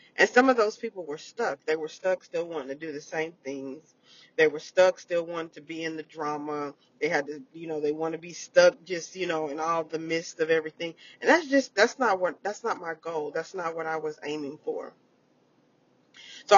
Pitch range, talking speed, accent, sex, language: 155-205 Hz, 230 wpm, American, female, English